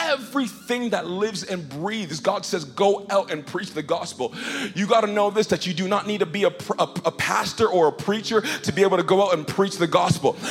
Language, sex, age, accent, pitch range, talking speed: English, male, 40-59, American, 195-250 Hz, 240 wpm